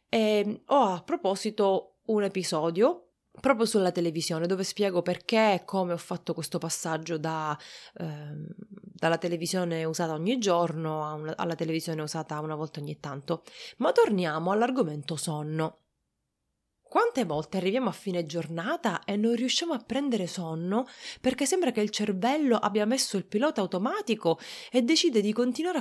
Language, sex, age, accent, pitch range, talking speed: Italian, female, 30-49, native, 160-220 Hz, 140 wpm